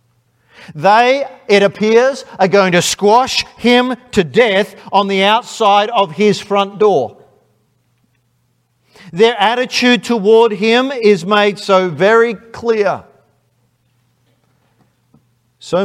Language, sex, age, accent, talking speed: English, male, 50-69, Australian, 100 wpm